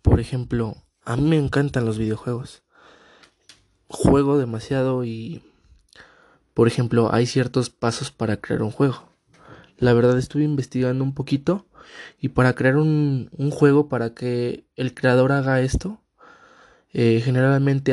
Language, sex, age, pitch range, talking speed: Spanish, male, 20-39, 120-140 Hz, 135 wpm